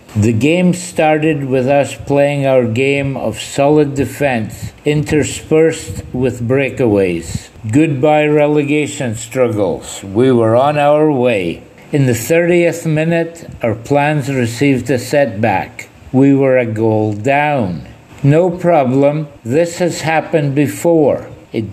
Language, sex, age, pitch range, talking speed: English, male, 50-69, 130-175 Hz, 120 wpm